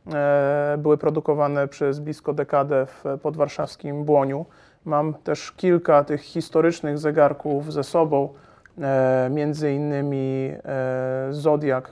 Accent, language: native, Polish